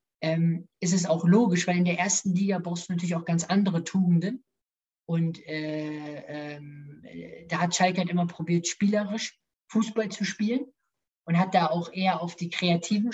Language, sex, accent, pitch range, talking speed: German, male, German, 170-215 Hz, 175 wpm